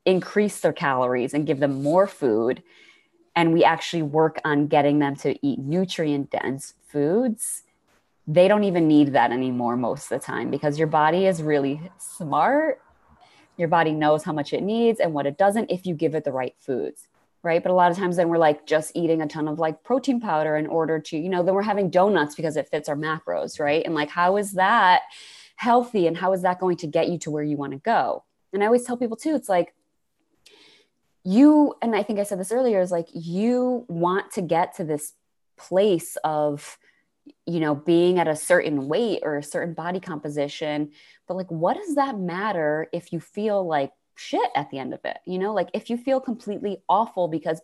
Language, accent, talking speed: English, American, 215 wpm